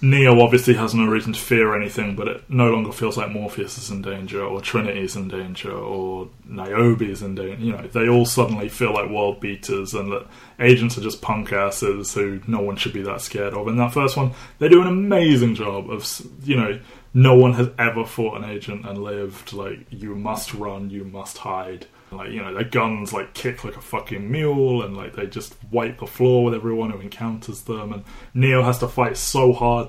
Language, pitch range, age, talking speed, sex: English, 105-125 Hz, 20-39, 220 wpm, male